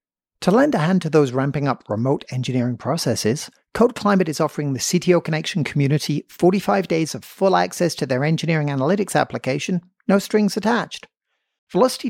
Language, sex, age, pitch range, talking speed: English, male, 40-59, 135-180 Hz, 165 wpm